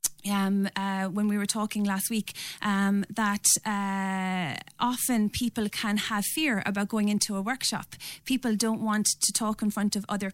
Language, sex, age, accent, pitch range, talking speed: English, female, 30-49, Irish, 205-230 Hz, 175 wpm